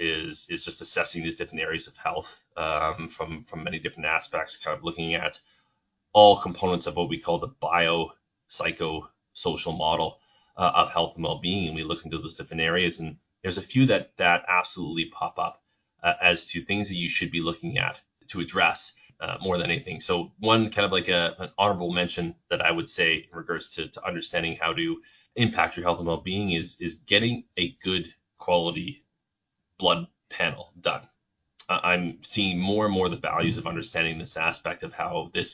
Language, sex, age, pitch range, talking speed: English, male, 30-49, 85-95 Hz, 200 wpm